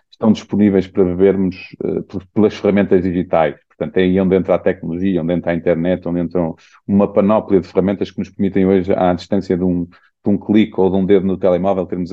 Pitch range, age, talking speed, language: 95-110 Hz, 40-59, 205 wpm, Portuguese